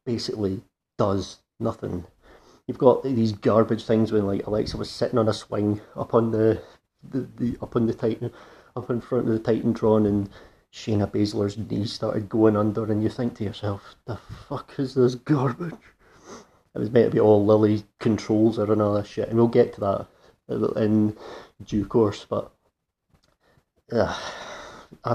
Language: English